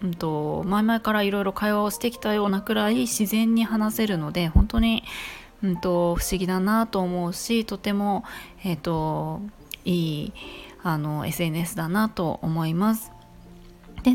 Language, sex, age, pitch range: Japanese, female, 20-39, 170-230 Hz